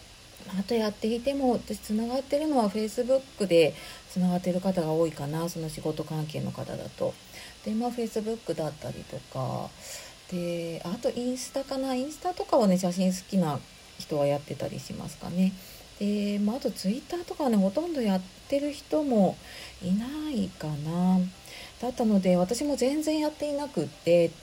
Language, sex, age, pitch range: Japanese, female, 40-59, 160-245 Hz